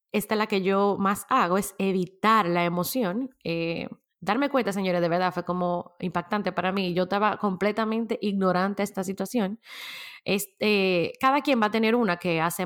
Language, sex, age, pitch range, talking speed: Spanish, female, 20-39, 190-260 Hz, 185 wpm